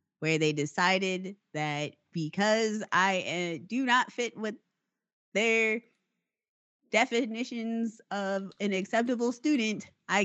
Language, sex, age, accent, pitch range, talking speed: English, female, 20-39, American, 155-230 Hz, 105 wpm